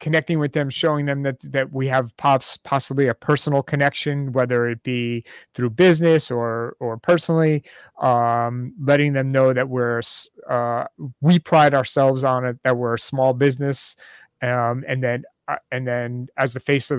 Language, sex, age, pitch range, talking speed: English, male, 30-49, 120-140 Hz, 170 wpm